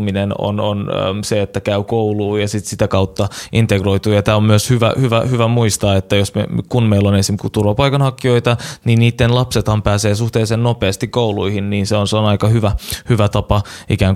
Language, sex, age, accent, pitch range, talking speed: Finnish, male, 20-39, native, 100-115 Hz, 180 wpm